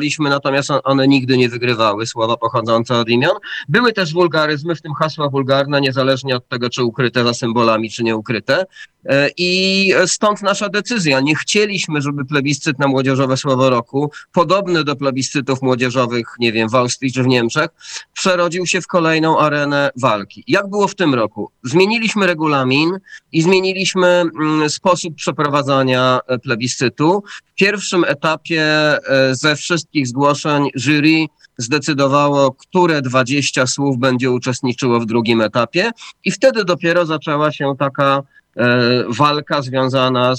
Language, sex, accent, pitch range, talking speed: Polish, male, native, 135-170 Hz, 140 wpm